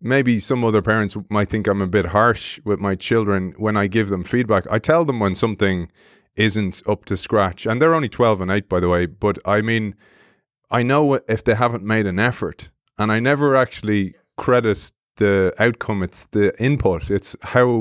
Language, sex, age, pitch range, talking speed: English, male, 20-39, 100-120 Hz, 200 wpm